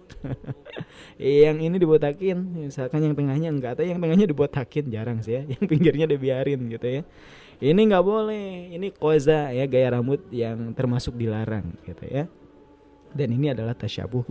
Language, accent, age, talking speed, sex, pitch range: Indonesian, native, 20-39, 155 wpm, male, 105-135 Hz